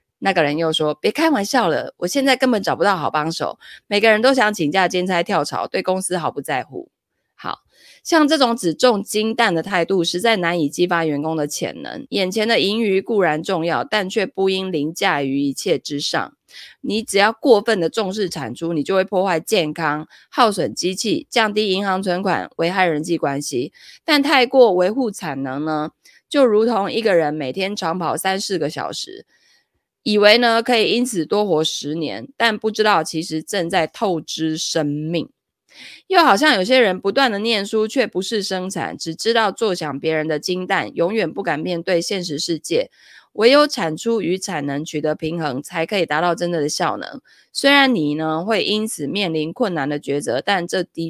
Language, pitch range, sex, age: Chinese, 160-220 Hz, female, 20-39